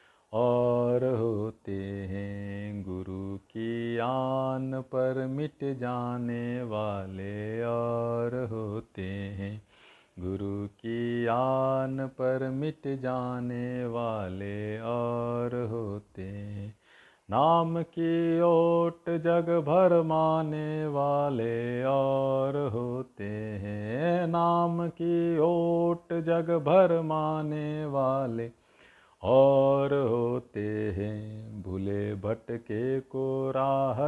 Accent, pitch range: native, 105-135 Hz